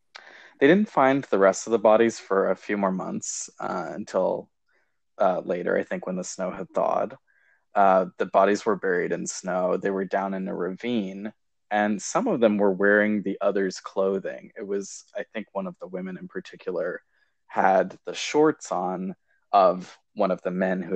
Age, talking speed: 20-39, 190 wpm